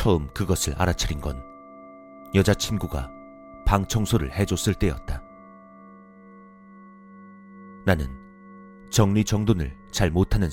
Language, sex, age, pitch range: Korean, male, 40-59, 75-115 Hz